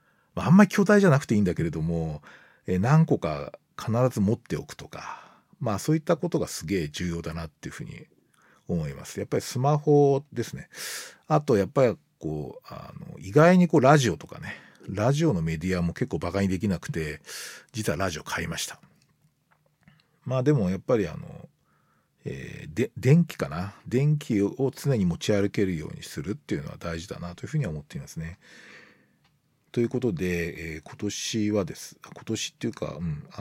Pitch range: 90-150 Hz